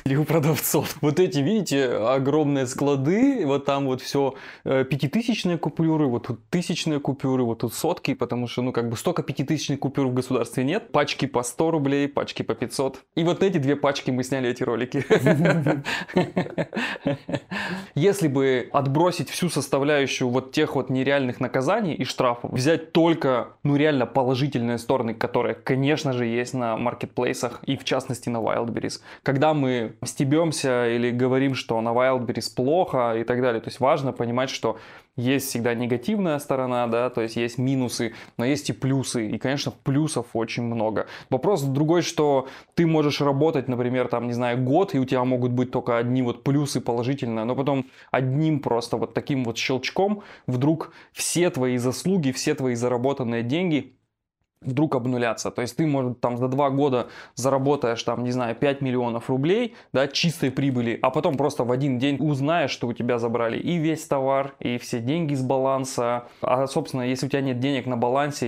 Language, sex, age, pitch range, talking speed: Russian, male, 20-39, 125-145 Hz, 175 wpm